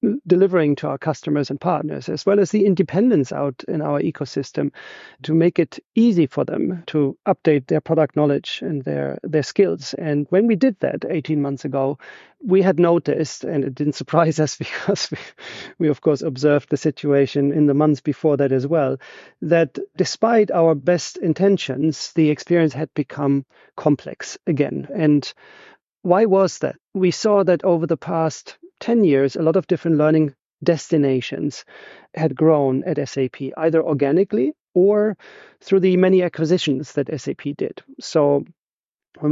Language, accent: English, German